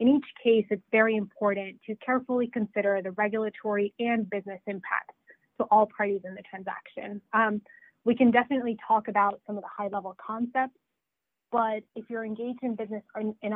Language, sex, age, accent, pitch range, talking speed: English, female, 20-39, American, 195-225 Hz, 170 wpm